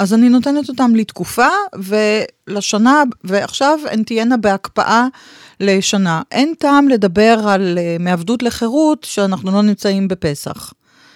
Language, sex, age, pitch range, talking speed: Hebrew, female, 40-59, 185-245 Hz, 115 wpm